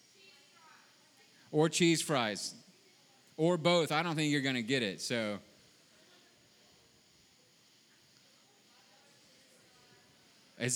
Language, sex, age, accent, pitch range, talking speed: English, male, 30-49, American, 140-170 Hz, 85 wpm